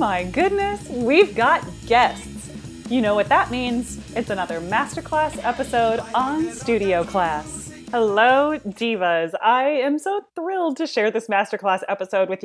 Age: 30-49